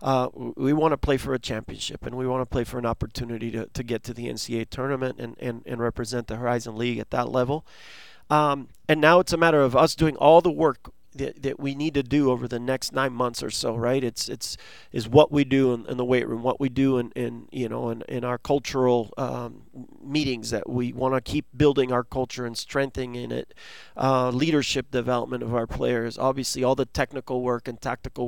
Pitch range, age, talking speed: 120-140 Hz, 40-59, 225 wpm